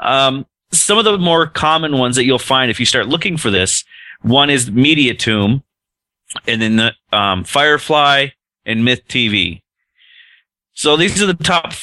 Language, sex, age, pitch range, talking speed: English, male, 30-49, 105-135 Hz, 165 wpm